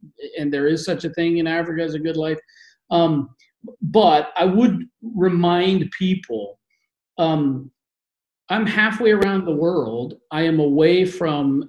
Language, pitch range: English, 150-195 Hz